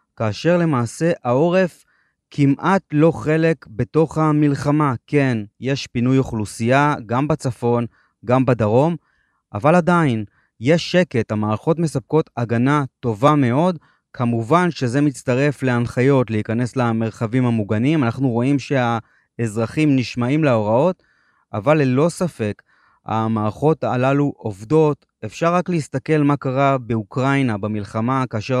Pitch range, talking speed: 115-145 Hz, 105 wpm